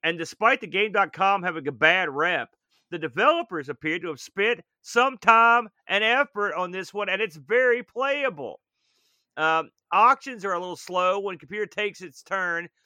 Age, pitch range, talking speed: 40-59, 150-210 Hz, 175 wpm